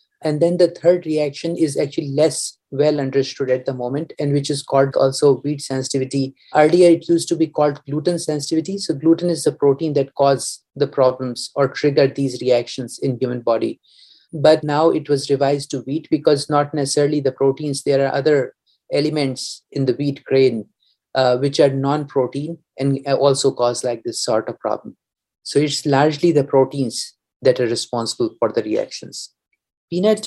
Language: English